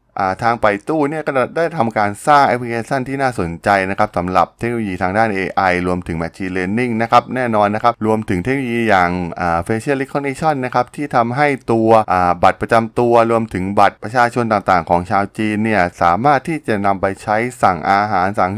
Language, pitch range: Thai, 100-125 Hz